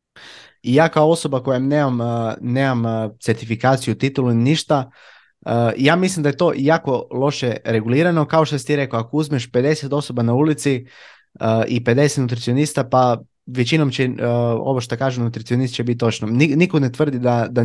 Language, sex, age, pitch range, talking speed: Croatian, male, 20-39, 120-145 Hz, 160 wpm